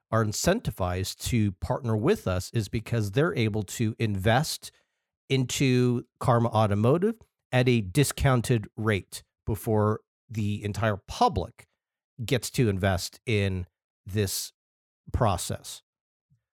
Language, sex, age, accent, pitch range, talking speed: English, male, 40-59, American, 105-125 Hz, 105 wpm